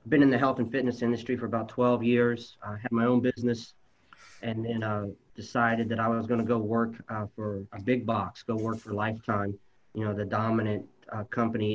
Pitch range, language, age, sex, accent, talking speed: 110-125 Hz, English, 40-59, male, American, 220 wpm